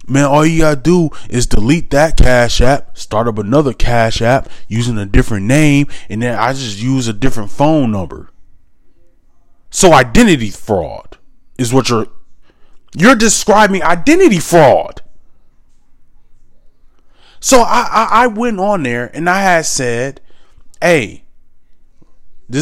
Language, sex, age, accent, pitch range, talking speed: English, male, 20-39, American, 110-160 Hz, 135 wpm